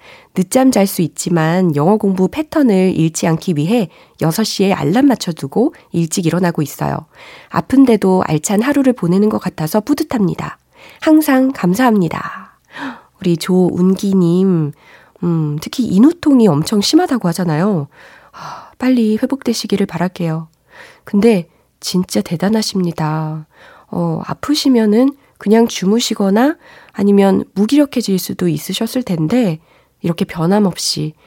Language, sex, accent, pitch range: Korean, female, native, 165-230 Hz